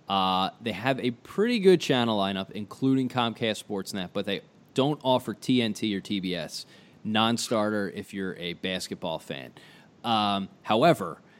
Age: 20-39